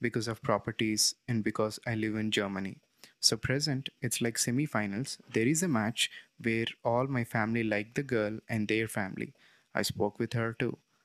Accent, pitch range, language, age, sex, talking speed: native, 110-125 Hz, Telugu, 20-39, male, 180 wpm